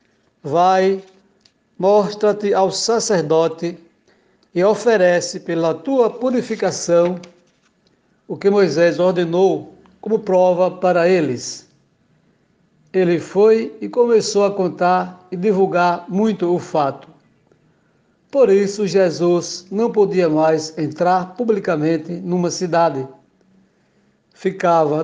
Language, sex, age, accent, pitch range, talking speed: Portuguese, male, 60-79, Brazilian, 165-210 Hz, 95 wpm